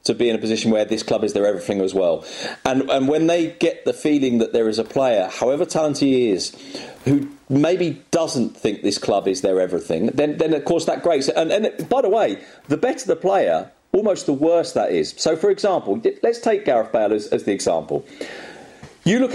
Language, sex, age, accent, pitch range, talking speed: English, male, 40-59, British, 135-210 Hz, 225 wpm